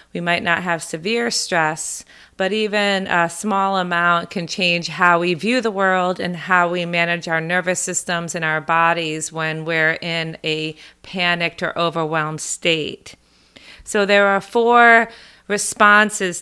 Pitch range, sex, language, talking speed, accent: 170-200 Hz, female, English, 150 wpm, American